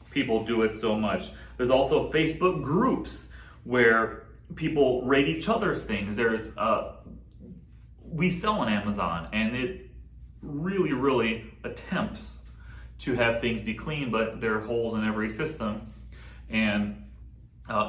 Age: 30-49